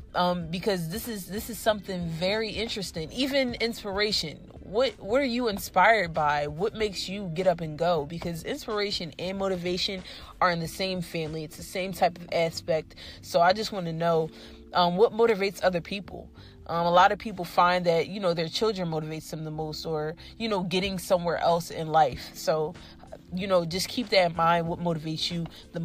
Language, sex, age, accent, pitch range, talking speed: English, female, 30-49, American, 170-205 Hz, 195 wpm